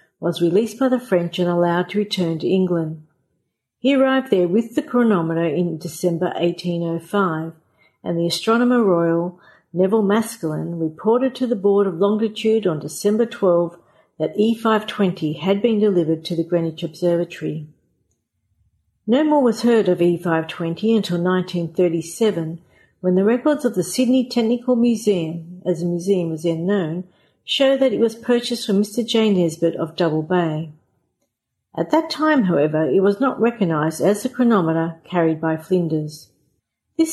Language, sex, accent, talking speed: English, female, Australian, 150 wpm